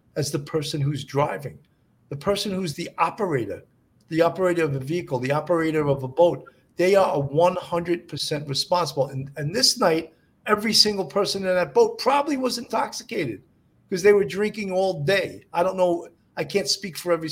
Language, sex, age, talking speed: English, male, 40-59, 180 wpm